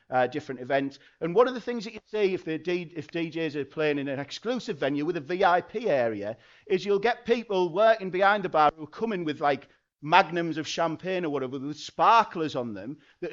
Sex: male